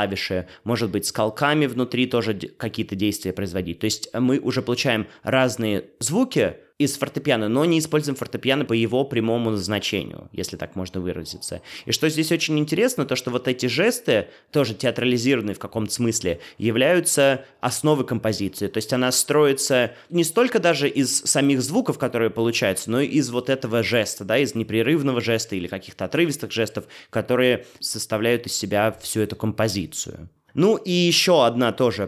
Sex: male